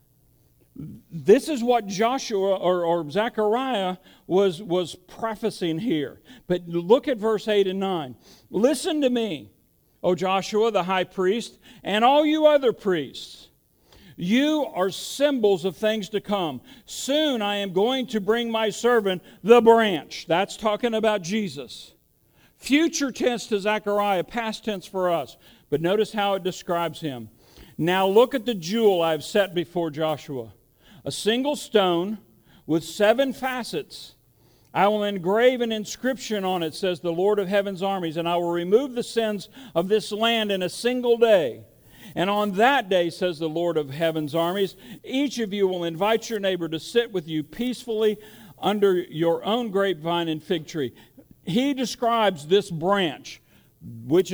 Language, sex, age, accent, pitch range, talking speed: English, male, 50-69, American, 170-225 Hz, 155 wpm